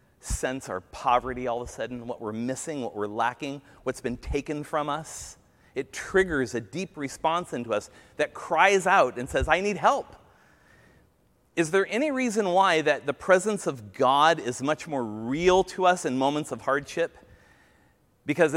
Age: 40-59